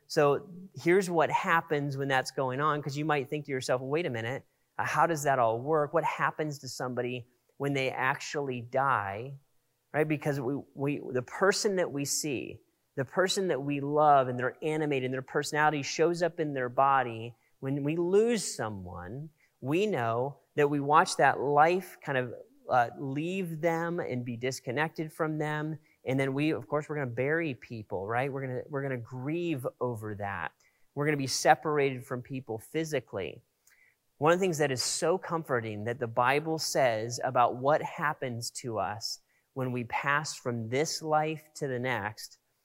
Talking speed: 175 wpm